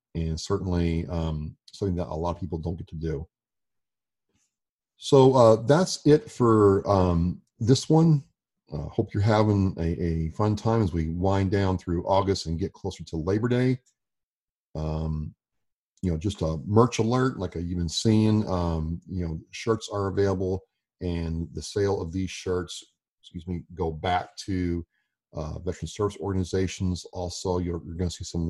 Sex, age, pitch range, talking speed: male, 40-59, 85-100 Hz, 165 wpm